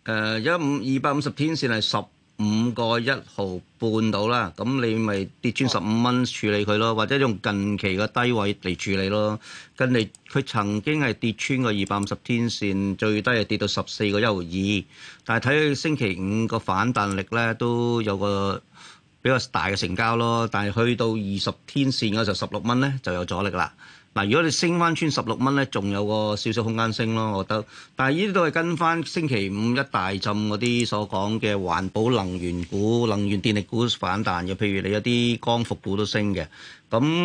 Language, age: Chinese, 40-59